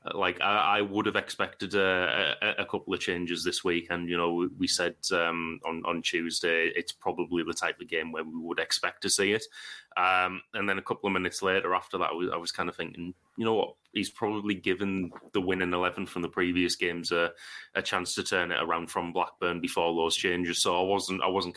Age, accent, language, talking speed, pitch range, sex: 20-39, British, English, 225 wpm, 85-100 Hz, male